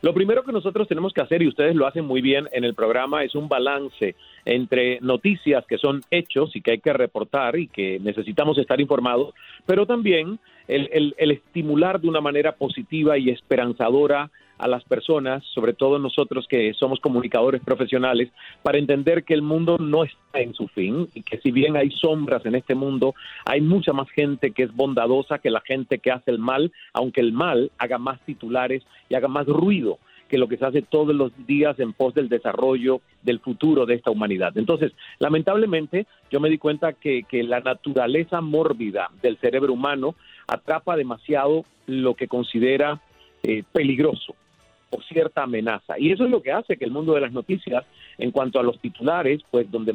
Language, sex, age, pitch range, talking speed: Spanish, male, 40-59, 130-165 Hz, 190 wpm